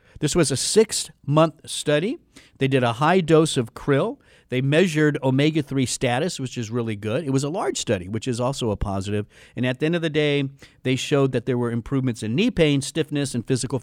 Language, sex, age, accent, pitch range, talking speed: English, male, 50-69, American, 125-160 Hz, 215 wpm